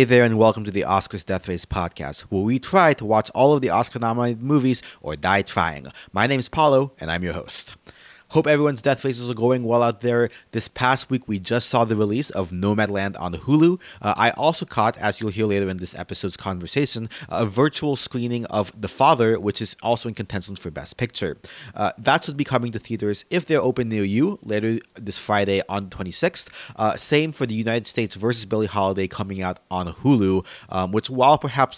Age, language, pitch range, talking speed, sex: 30-49, English, 100-130 Hz, 215 wpm, male